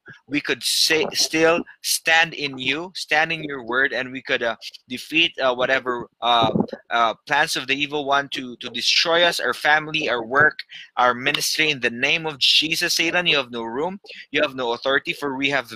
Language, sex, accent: English, male, Filipino